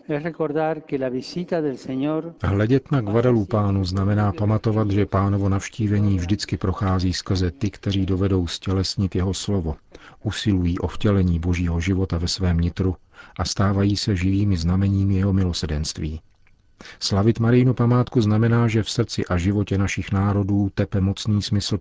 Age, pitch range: 40-59, 90-105 Hz